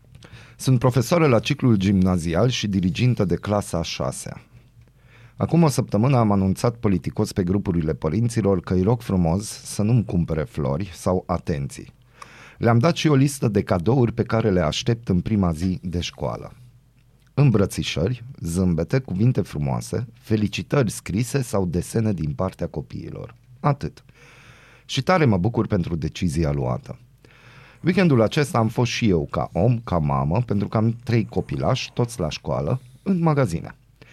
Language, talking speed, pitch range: Romanian, 150 wpm, 90-125 Hz